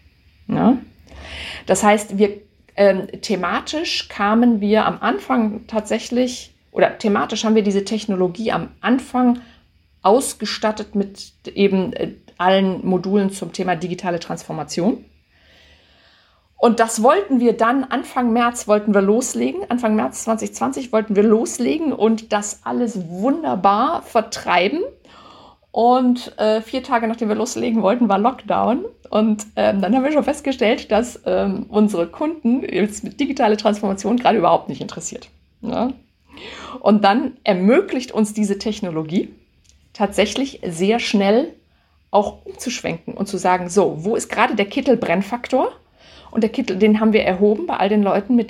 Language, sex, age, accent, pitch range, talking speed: German, female, 50-69, German, 195-240 Hz, 135 wpm